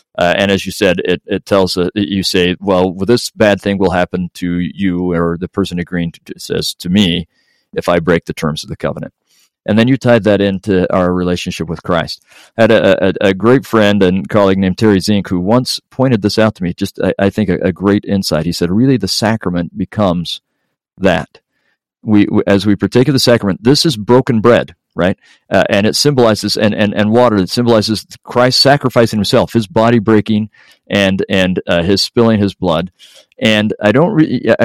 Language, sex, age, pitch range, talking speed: English, male, 40-59, 95-115 Hz, 205 wpm